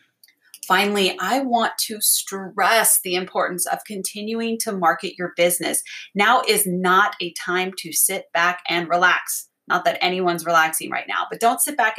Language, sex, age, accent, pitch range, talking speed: English, female, 30-49, American, 180-230 Hz, 165 wpm